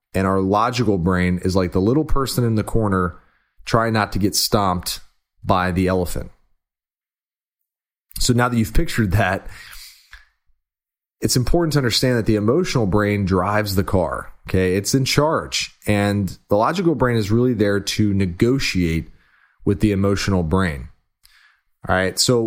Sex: male